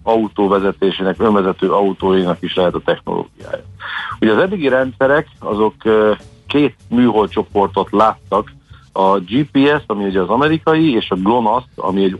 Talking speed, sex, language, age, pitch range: 130 wpm, male, Hungarian, 50-69, 95-115 Hz